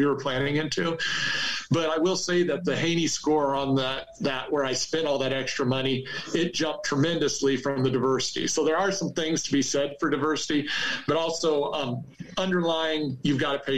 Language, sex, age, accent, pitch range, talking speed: English, male, 40-59, American, 135-155 Hz, 200 wpm